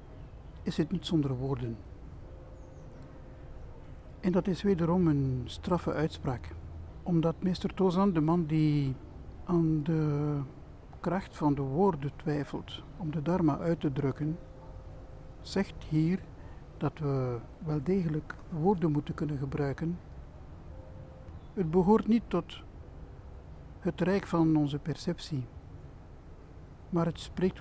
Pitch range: 130-165 Hz